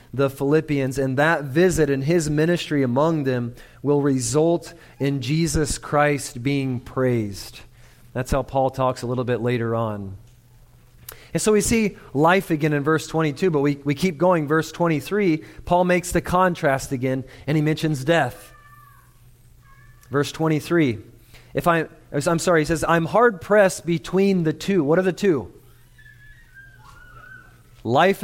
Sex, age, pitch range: male, 30-49, 125-170 Hz